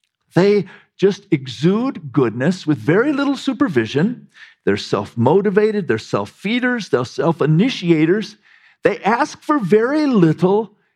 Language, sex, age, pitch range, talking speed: English, male, 50-69, 145-205 Hz, 105 wpm